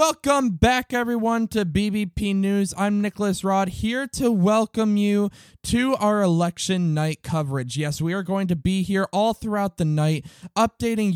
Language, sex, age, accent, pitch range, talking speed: English, male, 20-39, American, 145-200 Hz, 160 wpm